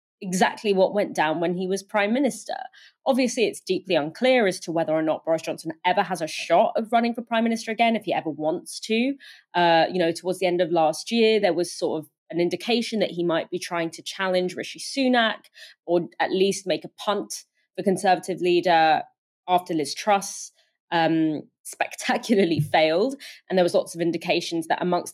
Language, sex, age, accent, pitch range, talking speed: English, female, 20-39, British, 170-225 Hz, 195 wpm